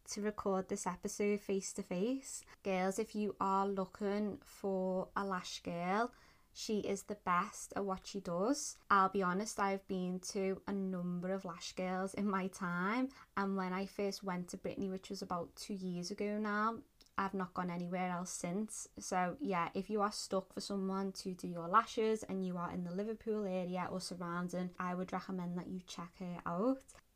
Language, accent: English, British